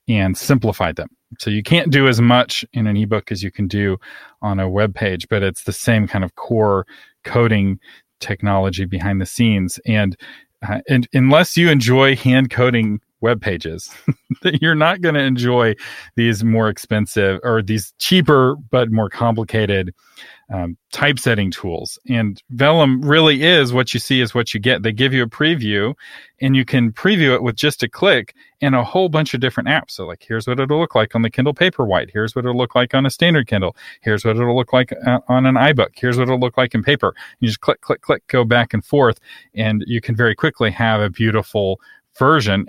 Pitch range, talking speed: 105-135 Hz, 205 wpm